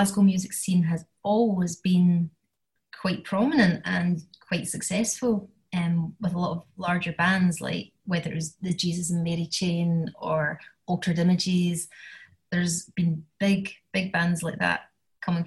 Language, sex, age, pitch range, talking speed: English, female, 20-39, 170-205 Hz, 145 wpm